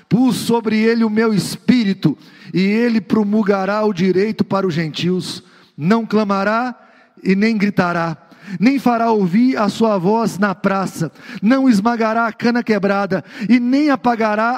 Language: Portuguese